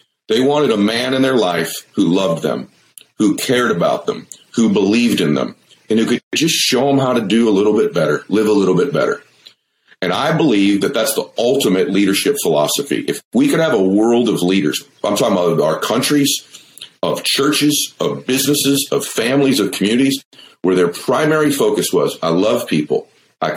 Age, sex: 40-59, male